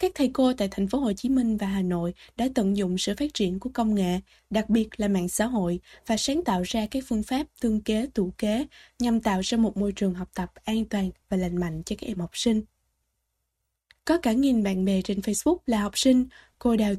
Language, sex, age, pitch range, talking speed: Vietnamese, female, 10-29, 195-255 Hz, 240 wpm